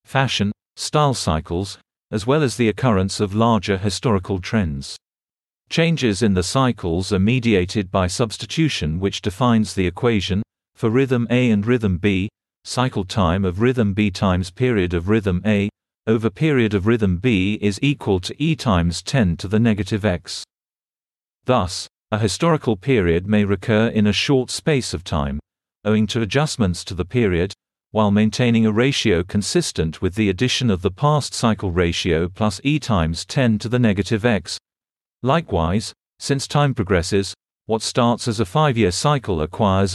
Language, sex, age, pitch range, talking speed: English, male, 40-59, 95-125 Hz, 160 wpm